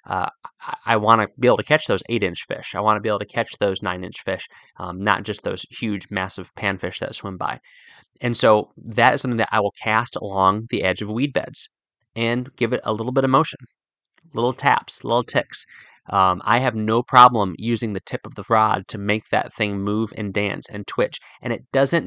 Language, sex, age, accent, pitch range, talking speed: English, male, 30-49, American, 100-120 Hz, 230 wpm